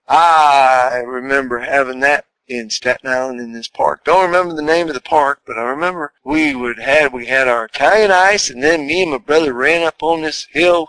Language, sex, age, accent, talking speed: English, male, 50-69, American, 215 wpm